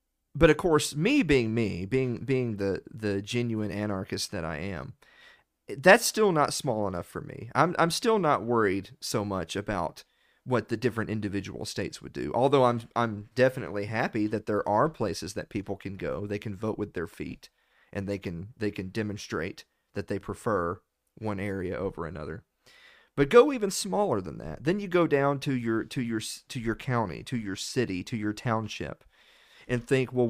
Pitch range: 105-130 Hz